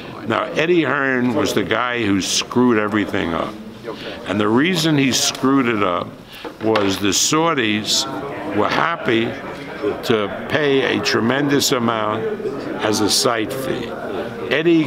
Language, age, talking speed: English, 60-79, 130 wpm